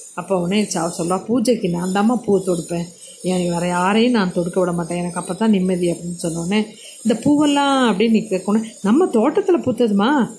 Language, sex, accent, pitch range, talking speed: Tamil, female, native, 185-220 Hz, 180 wpm